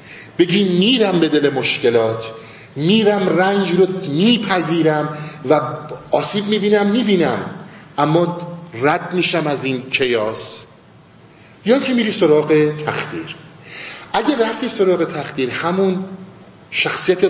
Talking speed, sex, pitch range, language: 105 wpm, male, 135-180 Hz, Persian